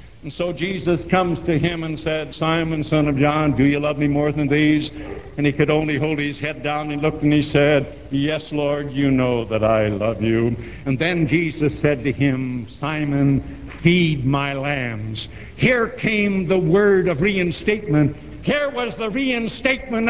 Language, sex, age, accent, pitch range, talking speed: English, male, 70-89, American, 140-215 Hz, 180 wpm